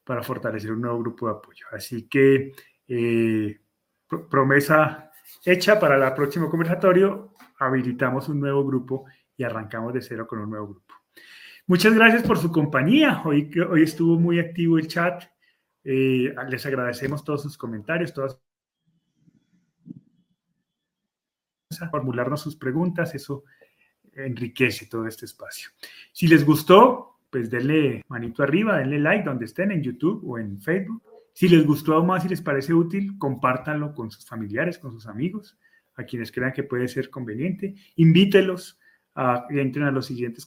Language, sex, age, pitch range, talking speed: Spanish, male, 30-49, 125-170 Hz, 150 wpm